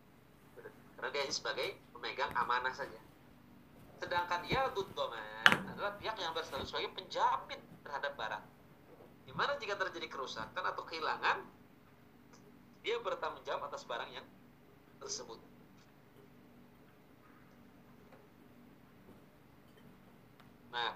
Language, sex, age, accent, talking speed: Indonesian, male, 40-59, native, 85 wpm